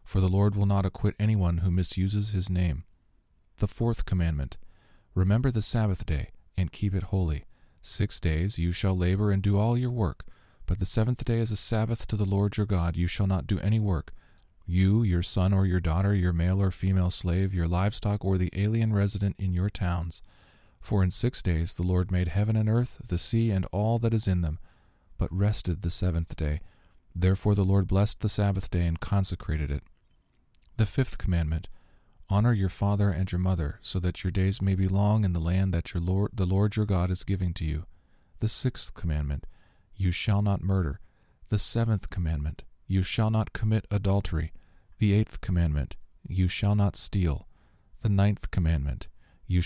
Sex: male